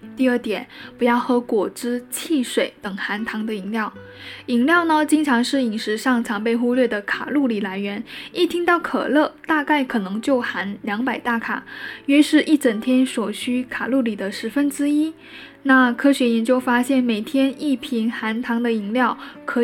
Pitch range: 225-275 Hz